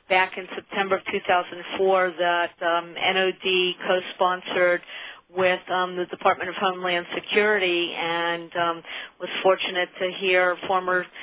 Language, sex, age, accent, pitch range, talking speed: English, female, 40-59, American, 175-190 Hz, 125 wpm